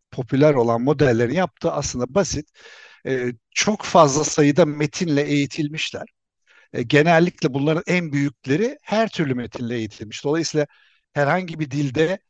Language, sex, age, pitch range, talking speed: Turkish, male, 60-79, 135-175 Hz, 120 wpm